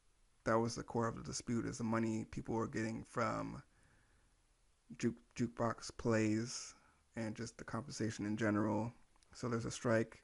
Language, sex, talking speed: English, male, 160 wpm